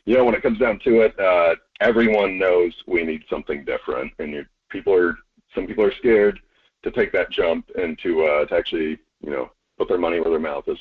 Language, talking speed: English, 230 wpm